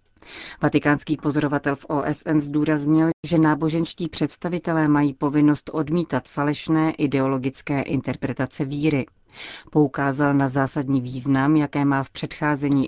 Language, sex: Czech, female